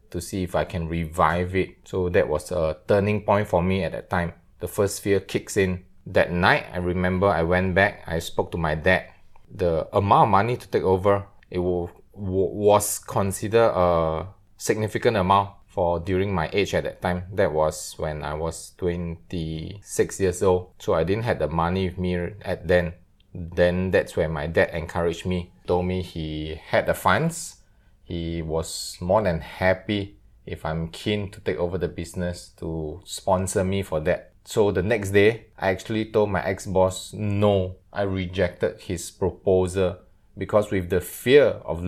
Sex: male